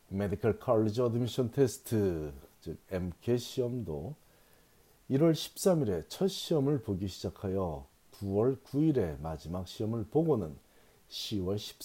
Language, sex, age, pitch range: Korean, male, 40-59, 100-140 Hz